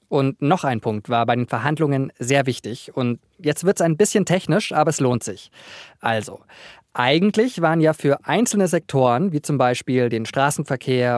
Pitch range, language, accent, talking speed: 125-170 Hz, German, German, 175 wpm